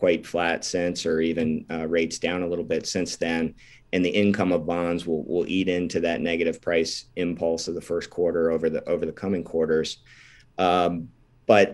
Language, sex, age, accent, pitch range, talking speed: English, male, 50-69, American, 90-100 Hz, 195 wpm